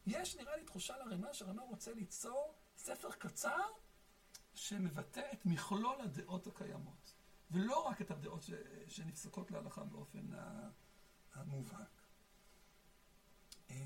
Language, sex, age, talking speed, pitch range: Hebrew, male, 60-79, 105 wpm, 185-200 Hz